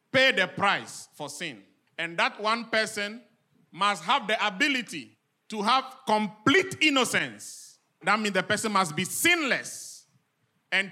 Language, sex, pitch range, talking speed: English, male, 130-195 Hz, 135 wpm